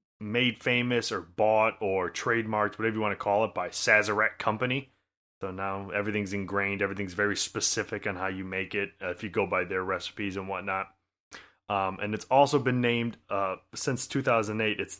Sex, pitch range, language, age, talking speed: male, 100-115 Hz, English, 30-49, 185 wpm